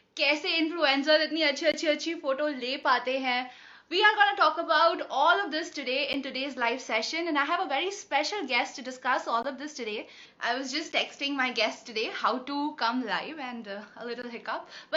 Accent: native